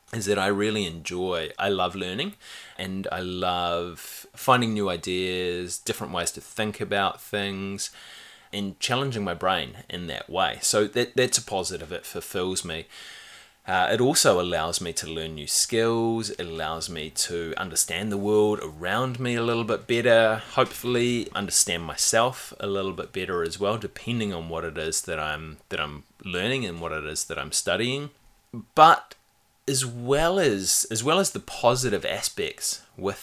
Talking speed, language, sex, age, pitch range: 170 wpm, English, male, 20-39, 90-120 Hz